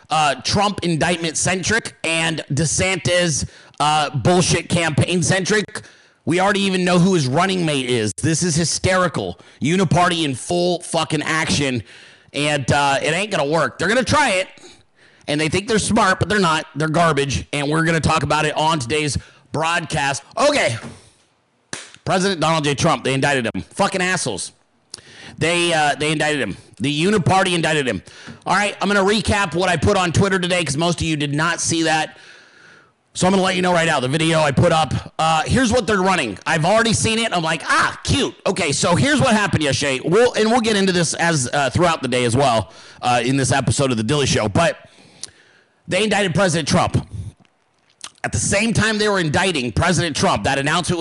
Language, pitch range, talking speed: English, 145-185 Hz, 200 wpm